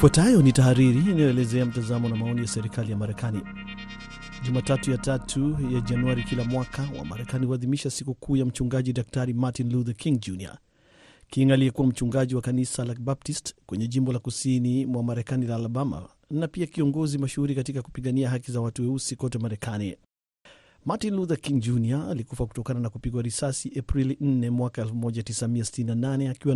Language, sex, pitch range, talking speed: Swahili, male, 120-135 Hz, 160 wpm